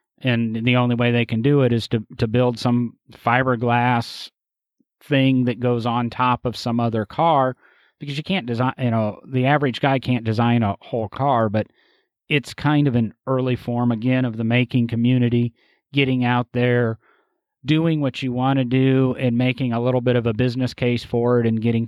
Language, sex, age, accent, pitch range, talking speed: English, male, 30-49, American, 120-140 Hz, 195 wpm